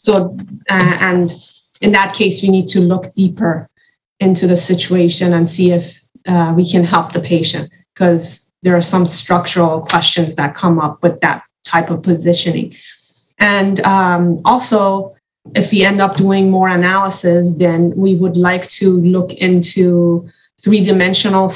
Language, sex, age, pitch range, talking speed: English, female, 20-39, 175-200 Hz, 155 wpm